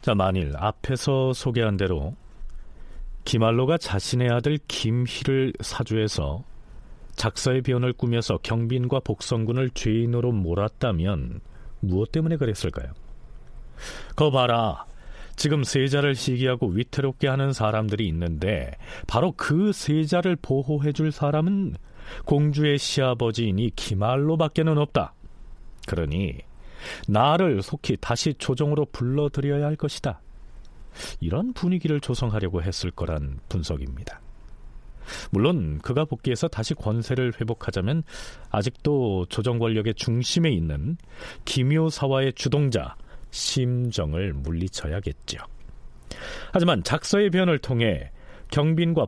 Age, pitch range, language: 40-59, 100-145 Hz, Korean